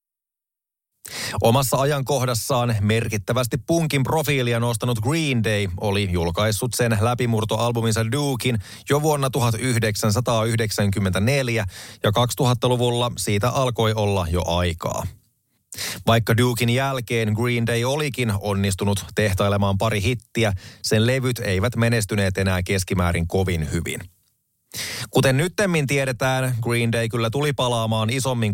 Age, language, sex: 30-49, Finnish, male